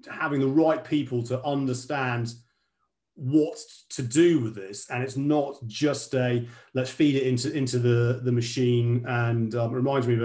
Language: English